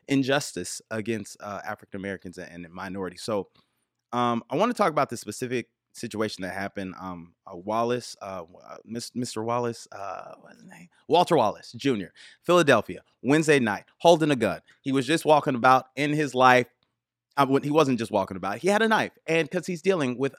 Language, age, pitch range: English, 30-49, 115-155 Hz